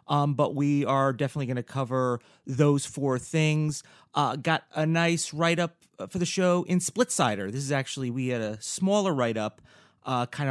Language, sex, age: English, male, 30-49